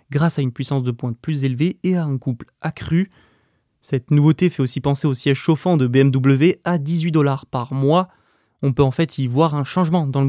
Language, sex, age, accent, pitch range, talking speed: French, male, 20-39, French, 135-165 Hz, 220 wpm